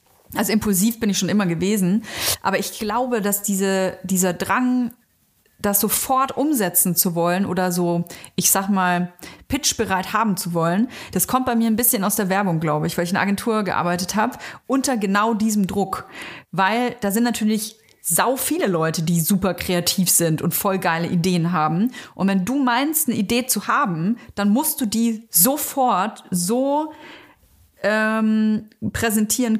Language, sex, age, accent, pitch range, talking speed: German, female, 30-49, German, 190-240 Hz, 160 wpm